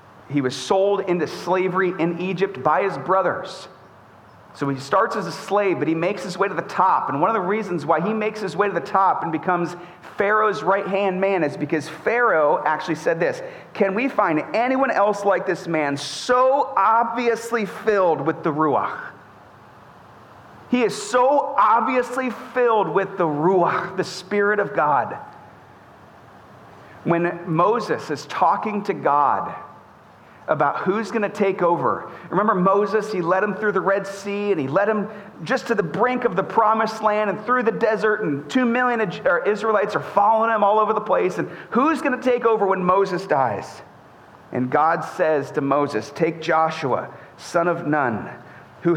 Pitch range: 170-220 Hz